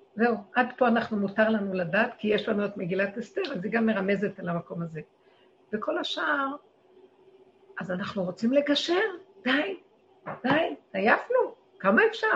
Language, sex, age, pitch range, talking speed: Hebrew, female, 50-69, 195-265 Hz, 150 wpm